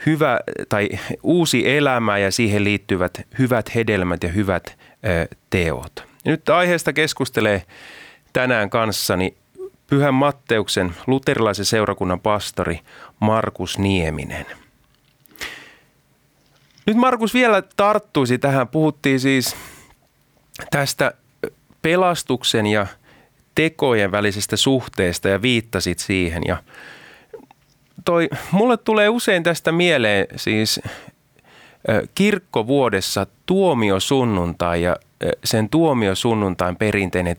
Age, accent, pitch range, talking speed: 30-49, native, 105-150 Hz, 85 wpm